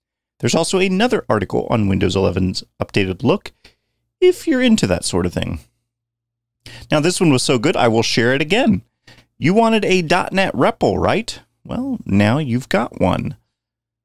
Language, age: English, 30-49